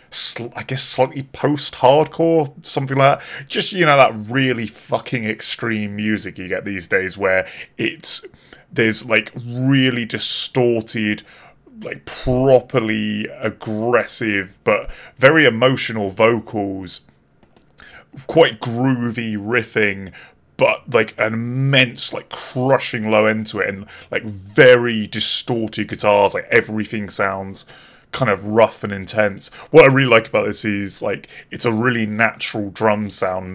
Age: 20-39